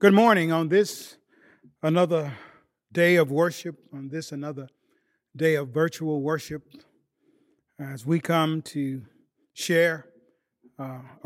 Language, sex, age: English, male, 40-59